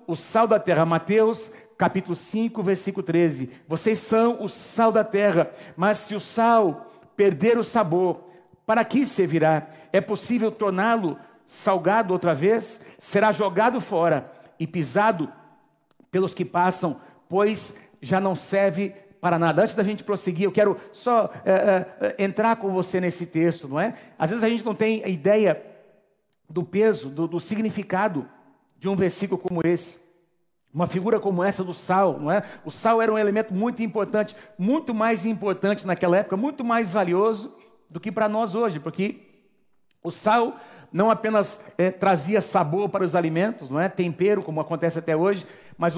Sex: male